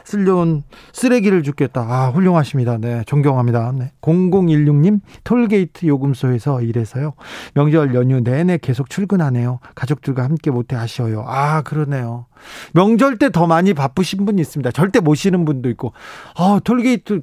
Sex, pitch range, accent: male, 135-175 Hz, native